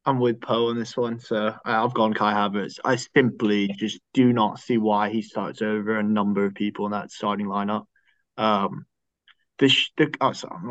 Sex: male